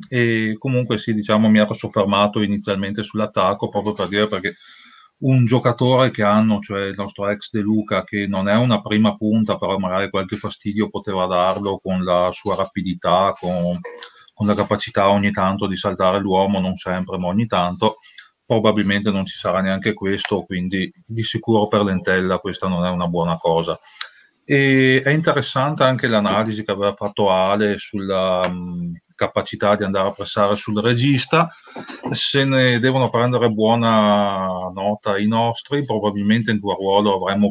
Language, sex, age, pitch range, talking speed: Italian, male, 30-49, 95-110 Hz, 160 wpm